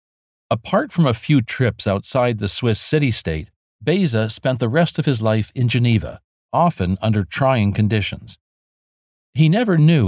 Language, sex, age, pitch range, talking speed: English, male, 50-69, 100-145 Hz, 150 wpm